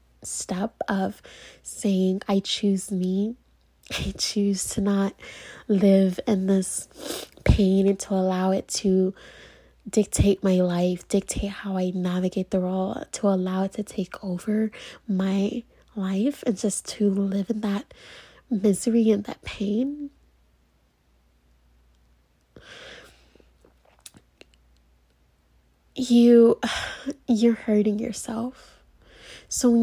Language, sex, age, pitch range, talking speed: English, female, 20-39, 190-220 Hz, 105 wpm